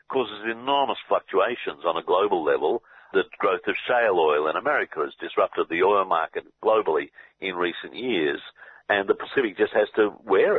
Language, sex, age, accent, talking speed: English, male, 50-69, Australian, 170 wpm